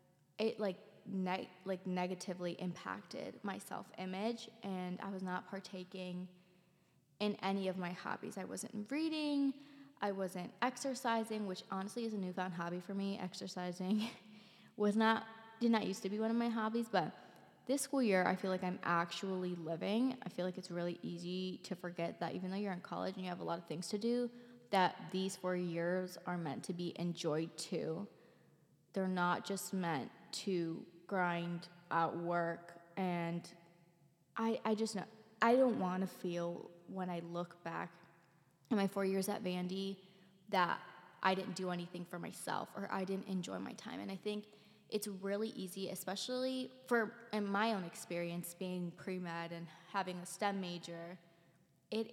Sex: female